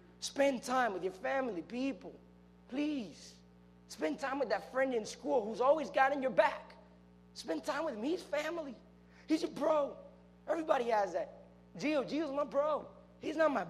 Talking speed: 170 wpm